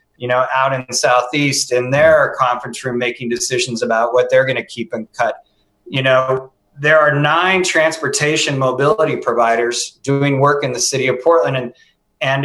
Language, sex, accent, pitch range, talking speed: English, male, American, 130-160 Hz, 180 wpm